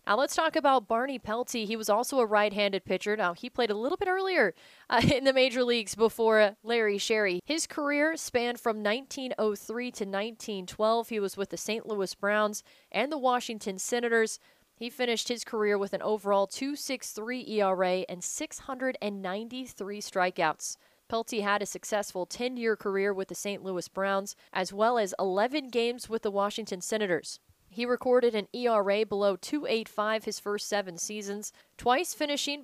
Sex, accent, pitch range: female, American, 200-245 Hz